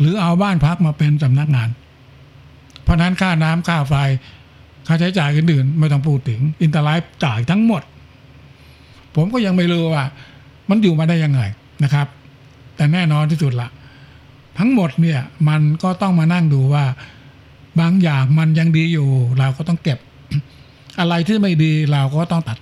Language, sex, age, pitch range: Thai, male, 60-79, 135-170 Hz